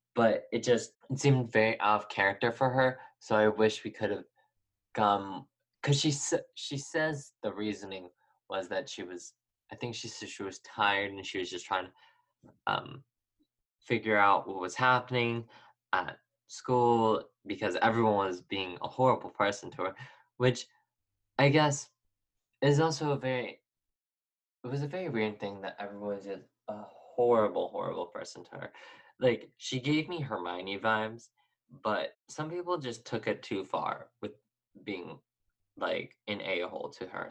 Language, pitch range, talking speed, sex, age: English, 100-140 Hz, 165 wpm, male, 20-39